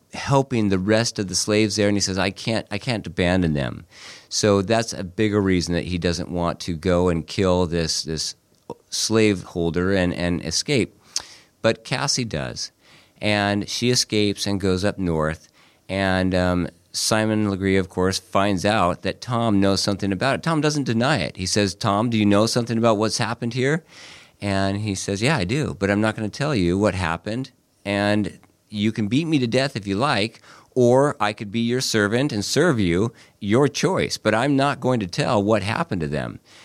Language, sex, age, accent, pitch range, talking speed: English, male, 40-59, American, 90-110 Hz, 195 wpm